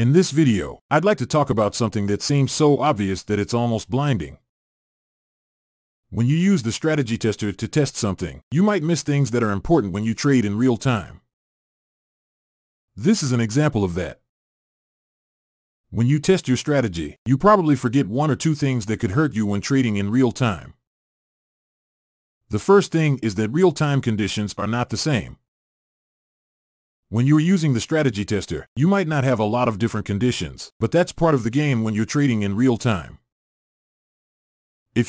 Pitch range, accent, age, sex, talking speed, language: 105-140 Hz, American, 40-59, male, 185 wpm, English